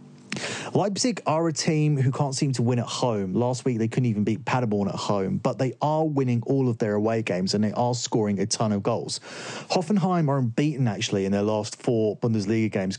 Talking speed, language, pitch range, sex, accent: 215 wpm, English, 105-130 Hz, male, British